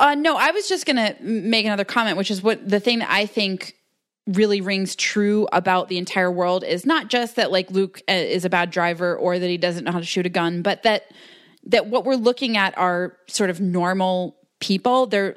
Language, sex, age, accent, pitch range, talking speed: English, female, 20-39, American, 165-200 Hz, 225 wpm